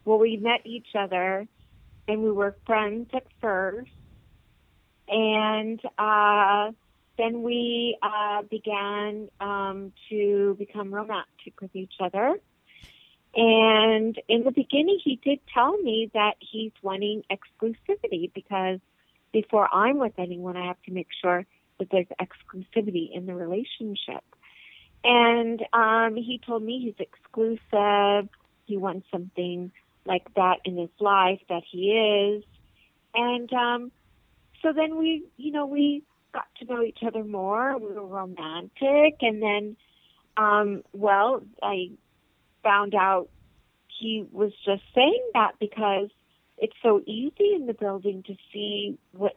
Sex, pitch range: female, 195-235 Hz